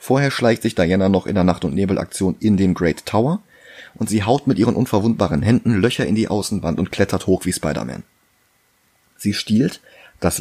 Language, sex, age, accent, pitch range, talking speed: German, male, 30-49, German, 95-115 Hz, 190 wpm